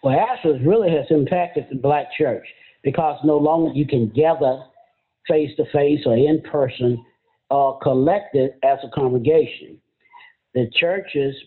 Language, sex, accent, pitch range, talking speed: English, male, American, 135-165 Hz, 145 wpm